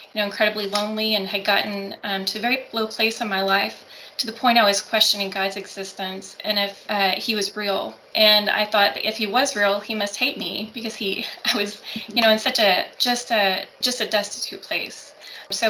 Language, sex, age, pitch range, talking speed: English, female, 20-39, 200-225 Hz, 220 wpm